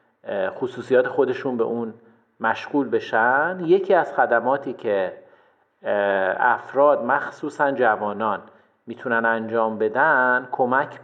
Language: Persian